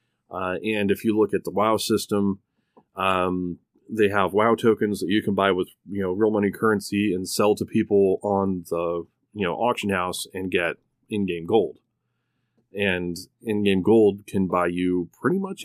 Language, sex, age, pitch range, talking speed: English, male, 30-49, 100-125 Hz, 175 wpm